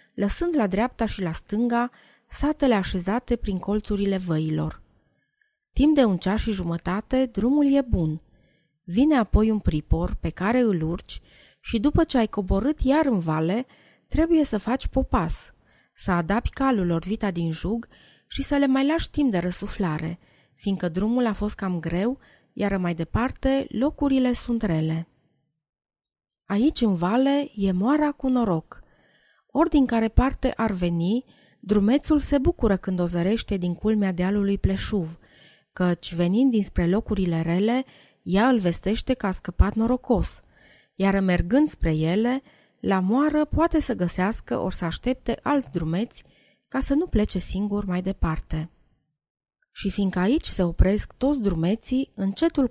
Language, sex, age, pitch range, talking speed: Romanian, female, 30-49, 180-260 Hz, 150 wpm